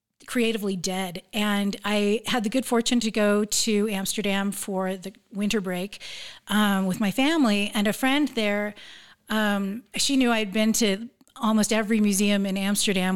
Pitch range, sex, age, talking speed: 205-240 Hz, female, 40-59, 160 wpm